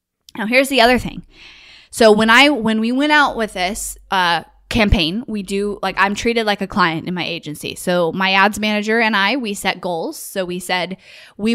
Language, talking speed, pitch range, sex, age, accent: English, 210 wpm, 180-215 Hz, female, 10-29, American